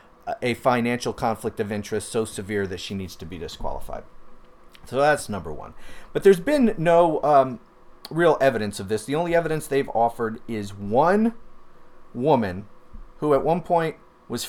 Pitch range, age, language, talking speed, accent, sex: 115-165 Hz, 30-49, English, 160 wpm, American, male